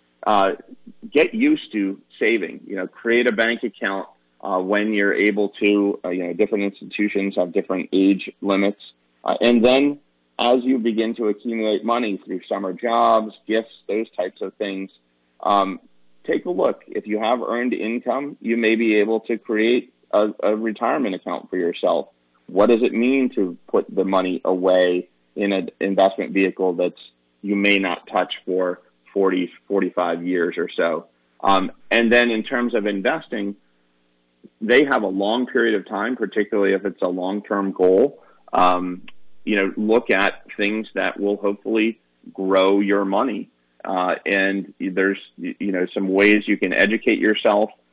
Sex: male